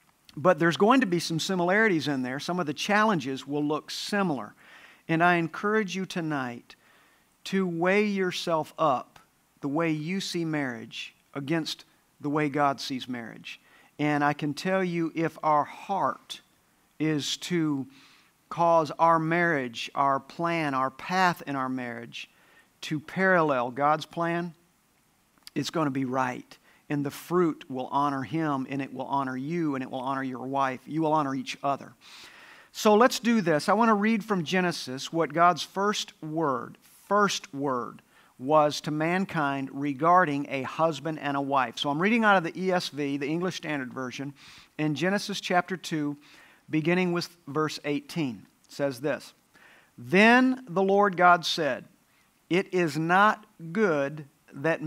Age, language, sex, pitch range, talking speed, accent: 50-69, English, male, 140-180 Hz, 155 wpm, American